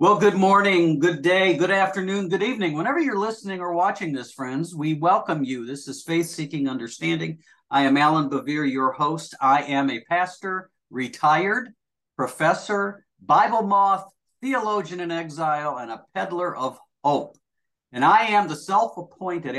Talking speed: 155 wpm